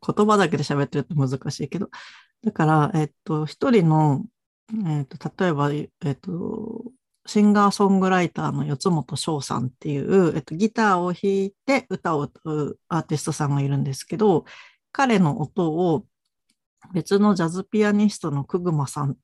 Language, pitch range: Japanese, 145-205 Hz